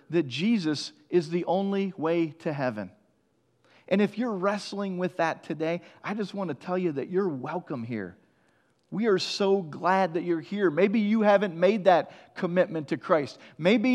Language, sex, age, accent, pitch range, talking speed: English, male, 40-59, American, 150-195 Hz, 175 wpm